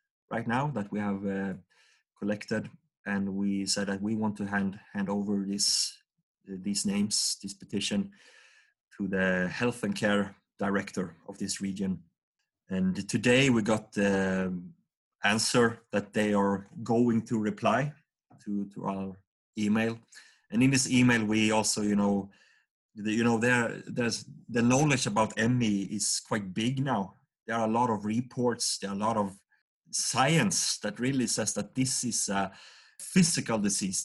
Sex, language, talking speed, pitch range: male, English, 160 wpm, 100-125 Hz